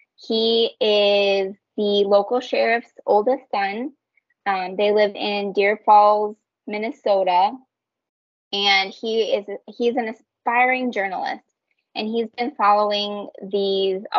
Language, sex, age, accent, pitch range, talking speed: English, female, 20-39, American, 190-225 Hz, 110 wpm